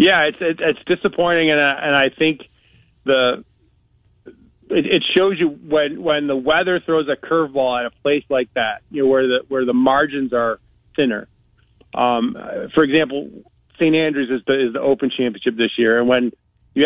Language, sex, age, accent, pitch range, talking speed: English, male, 30-49, American, 125-150 Hz, 180 wpm